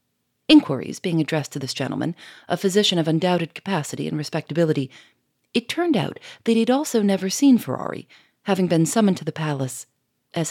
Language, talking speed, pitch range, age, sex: English, 170 wpm, 160-210 Hz, 40-59, female